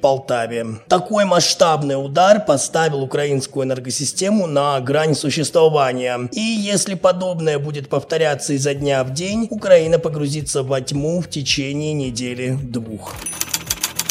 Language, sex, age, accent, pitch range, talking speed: Russian, male, 20-39, native, 135-170 Hz, 110 wpm